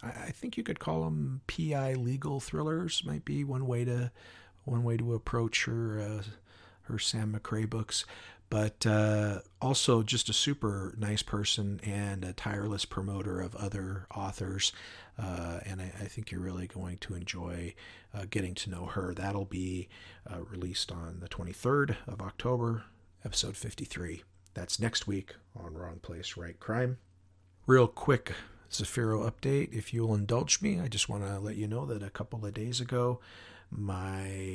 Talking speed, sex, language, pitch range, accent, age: 165 wpm, male, English, 95-115 Hz, American, 50-69